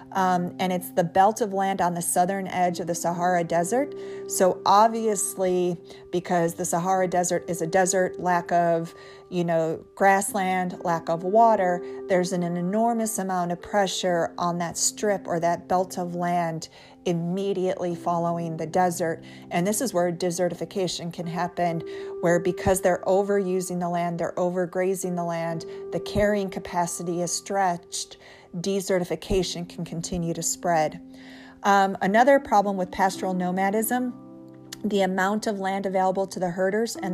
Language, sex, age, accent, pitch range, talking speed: English, female, 40-59, American, 175-195 Hz, 150 wpm